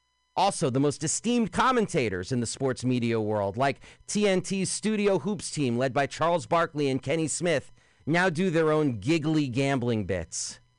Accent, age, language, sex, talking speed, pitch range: American, 40-59, English, male, 160 wpm, 120-165 Hz